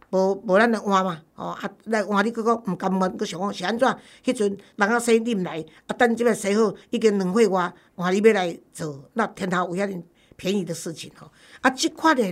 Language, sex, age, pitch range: Chinese, female, 50-69, 185-245 Hz